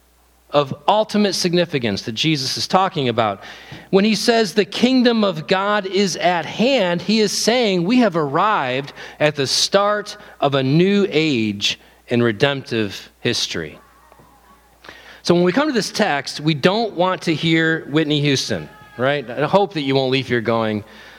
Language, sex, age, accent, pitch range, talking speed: English, male, 40-59, American, 120-195 Hz, 160 wpm